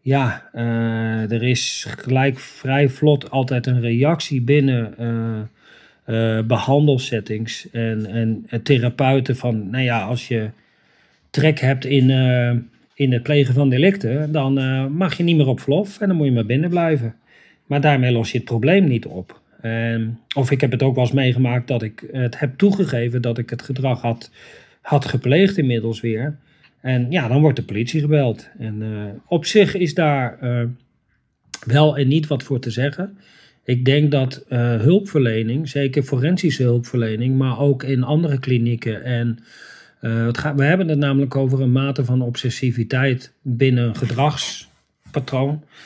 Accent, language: Dutch, Dutch